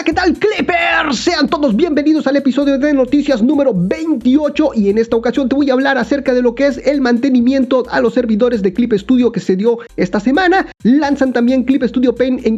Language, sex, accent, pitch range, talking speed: Spanish, male, Mexican, 235-300 Hz, 210 wpm